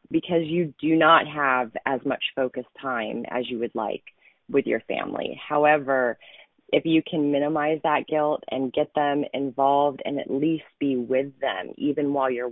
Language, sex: English, female